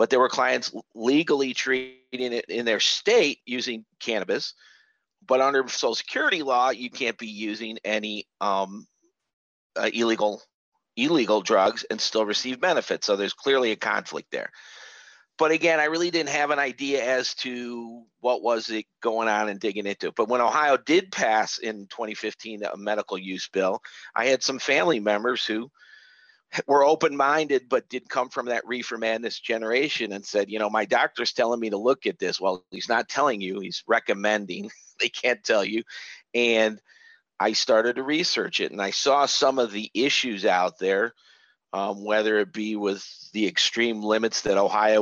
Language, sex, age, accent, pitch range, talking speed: English, male, 50-69, American, 105-125 Hz, 175 wpm